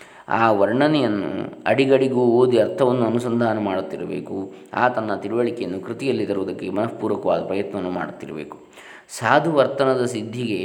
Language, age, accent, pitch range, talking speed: Kannada, 20-39, native, 100-125 Hz, 90 wpm